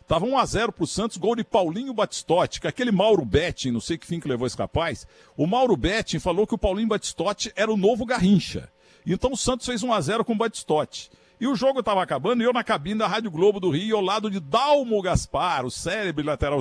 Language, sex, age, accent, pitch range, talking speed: Portuguese, male, 60-79, Brazilian, 140-220 Hz, 240 wpm